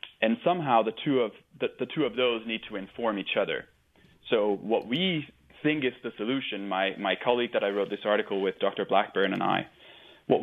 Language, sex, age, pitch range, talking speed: English, male, 20-39, 100-120 Hz, 205 wpm